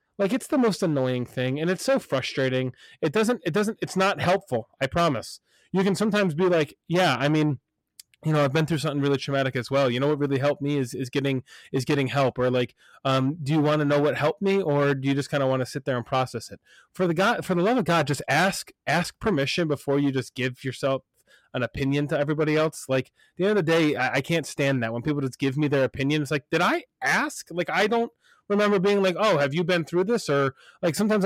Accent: American